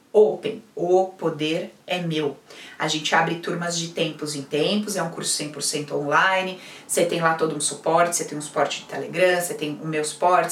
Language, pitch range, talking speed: Portuguese, 160-245 Hz, 200 wpm